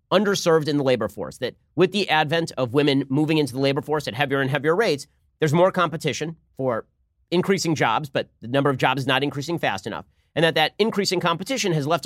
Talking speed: 220 wpm